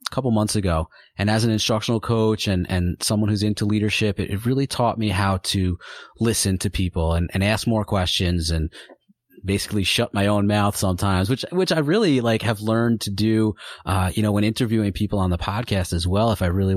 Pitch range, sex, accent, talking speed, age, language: 95-115 Hz, male, American, 210 wpm, 30-49, English